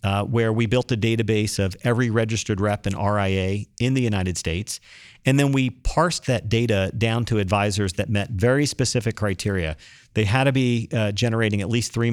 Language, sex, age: English, male, 40-59